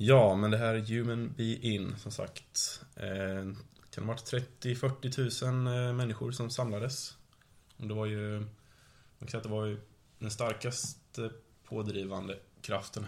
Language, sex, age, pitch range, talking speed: Swedish, male, 20-39, 100-125 Hz, 145 wpm